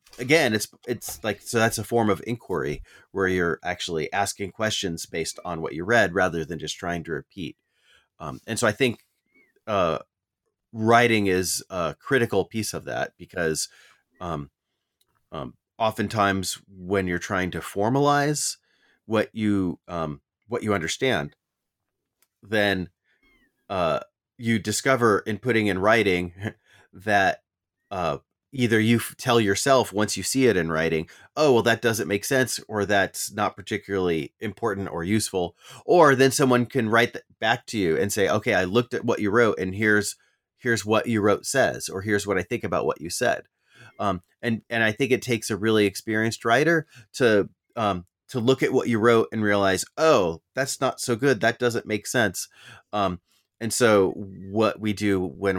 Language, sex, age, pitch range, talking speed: English, male, 30-49, 95-120 Hz, 170 wpm